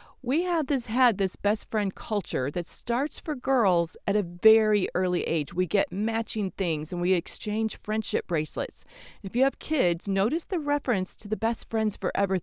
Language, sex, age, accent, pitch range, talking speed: English, female, 40-59, American, 175-240 Hz, 175 wpm